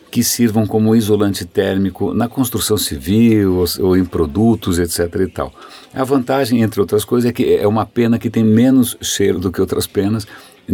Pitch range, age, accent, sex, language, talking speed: 90-115 Hz, 60-79, Brazilian, male, Portuguese, 175 wpm